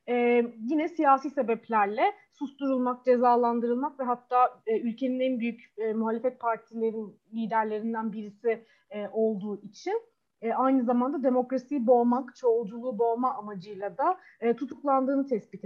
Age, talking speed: 30-49, 125 wpm